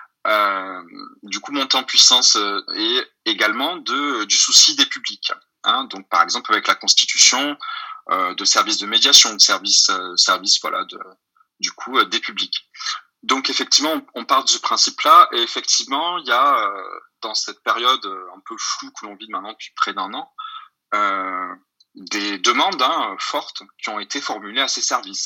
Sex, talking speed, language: male, 185 wpm, French